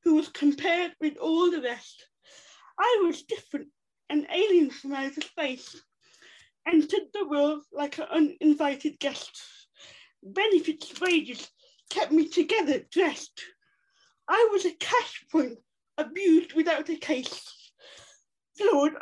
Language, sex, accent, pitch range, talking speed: English, female, British, 300-370 Hz, 120 wpm